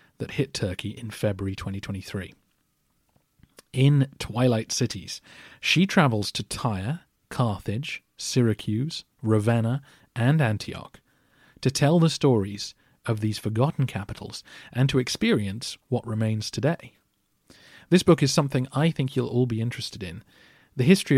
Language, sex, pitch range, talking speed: English, male, 105-130 Hz, 130 wpm